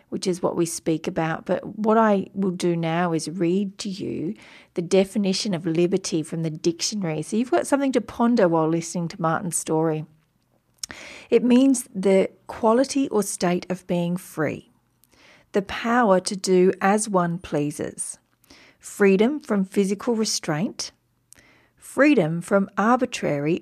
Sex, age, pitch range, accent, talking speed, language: female, 40-59, 170-215 Hz, Australian, 145 wpm, English